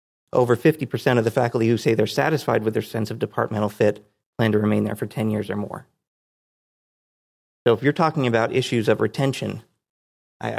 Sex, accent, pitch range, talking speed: male, American, 110-140 Hz, 185 wpm